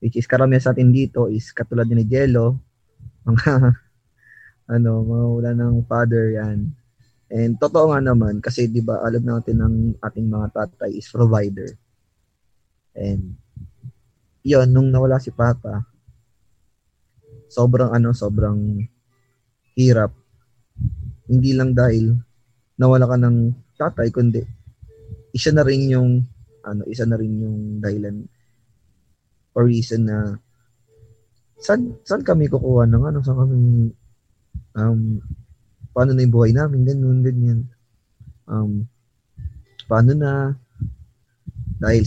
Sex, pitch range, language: male, 110-125 Hz, Filipino